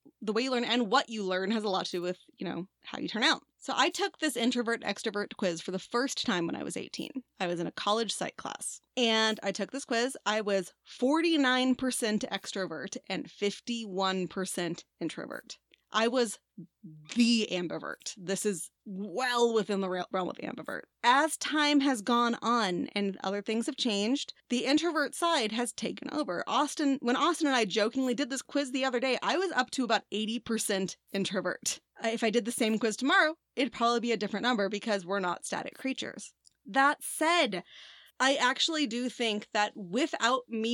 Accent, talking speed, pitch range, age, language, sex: American, 190 wpm, 200-260 Hz, 20-39, English, female